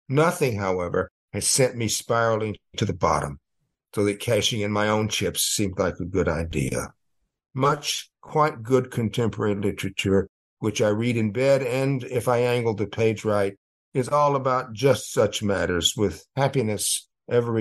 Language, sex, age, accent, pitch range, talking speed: English, male, 60-79, American, 105-130 Hz, 160 wpm